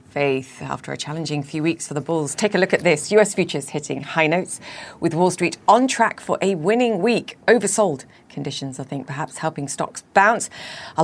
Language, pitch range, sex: English, 150-185 Hz, female